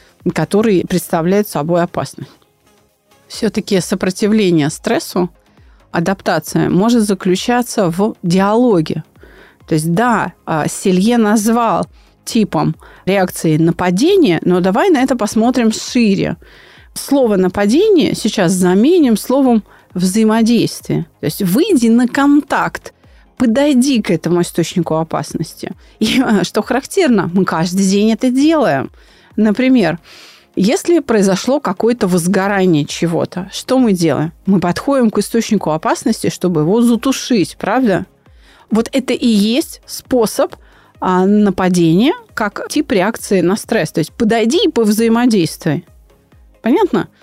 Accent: native